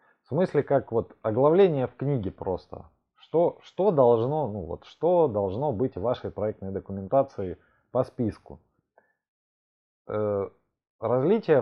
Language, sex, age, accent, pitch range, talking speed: Russian, male, 20-39, native, 105-140 Hz, 120 wpm